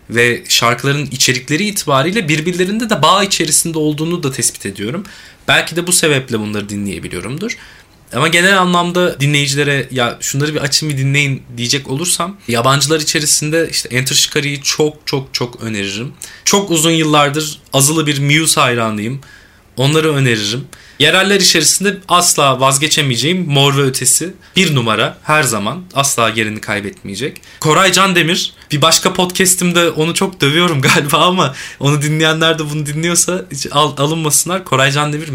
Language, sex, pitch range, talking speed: Turkish, male, 130-170 Hz, 135 wpm